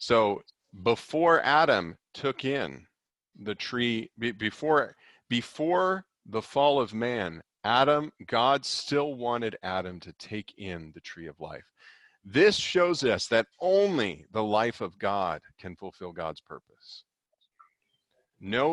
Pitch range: 95-130 Hz